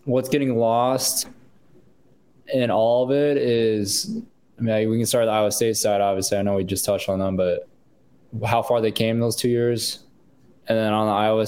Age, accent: 20-39, American